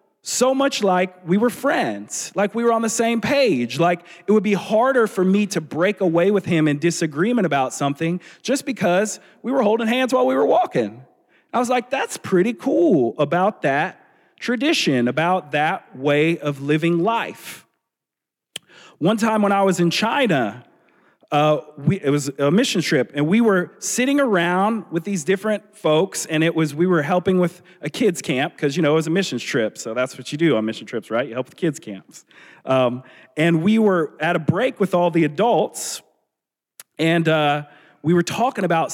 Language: English